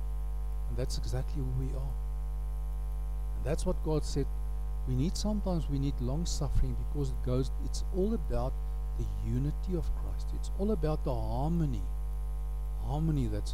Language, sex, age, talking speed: English, male, 50-69, 155 wpm